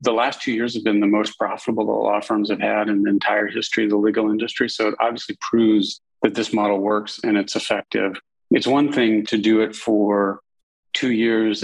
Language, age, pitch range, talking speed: English, 40-59, 100-110 Hz, 215 wpm